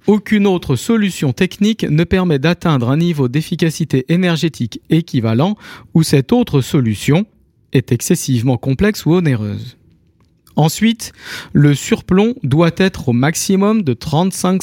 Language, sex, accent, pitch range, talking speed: French, male, French, 125-185 Hz, 125 wpm